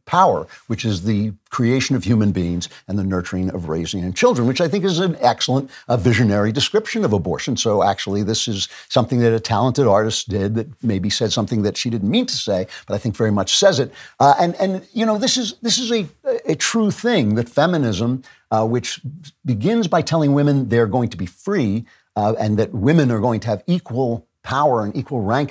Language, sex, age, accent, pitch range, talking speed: English, male, 50-69, American, 105-140 Hz, 215 wpm